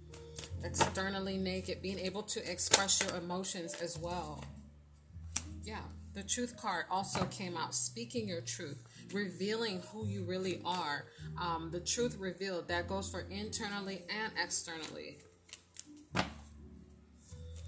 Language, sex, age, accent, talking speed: English, female, 30-49, American, 120 wpm